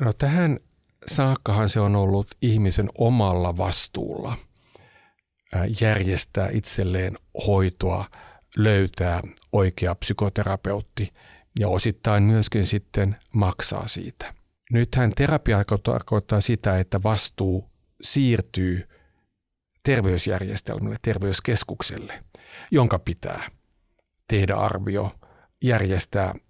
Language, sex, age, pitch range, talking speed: Finnish, male, 50-69, 95-115 Hz, 80 wpm